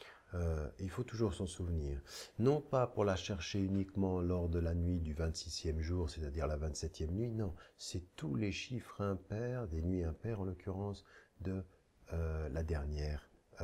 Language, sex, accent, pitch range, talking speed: French, male, French, 80-95 Hz, 170 wpm